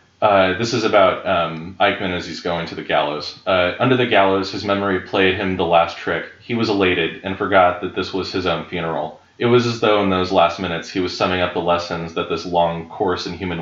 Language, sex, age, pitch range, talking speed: English, male, 30-49, 85-100 Hz, 240 wpm